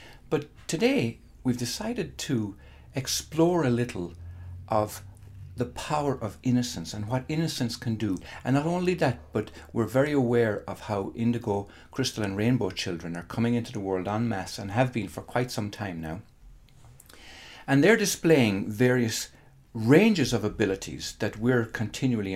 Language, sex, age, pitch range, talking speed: English, male, 60-79, 100-130 Hz, 155 wpm